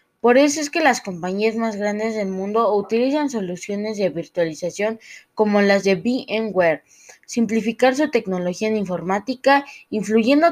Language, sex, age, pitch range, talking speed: Malay, female, 20-39, 195-245 Hz, 135 wpm